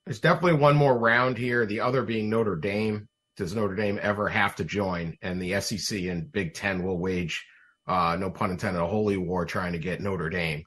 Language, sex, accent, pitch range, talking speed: English, male, American, 95-120 Hz, 215 wpm